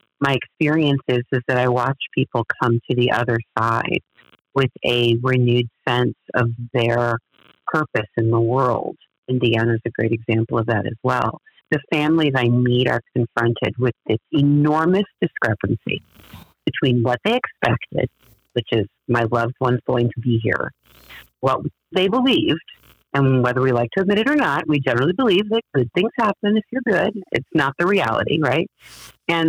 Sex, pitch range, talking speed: female, 120-160 Hz, 170 wpm